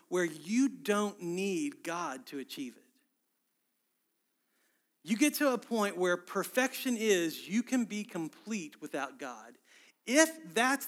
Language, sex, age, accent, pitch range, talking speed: English, male, 40-59, American, 155-245 Hz, 130 wpm